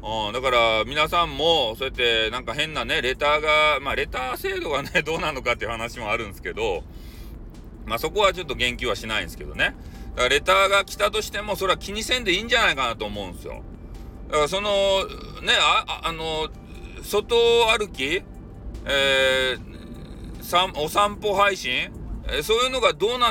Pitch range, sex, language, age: 120-205 Hz, male, Japanese, 40-59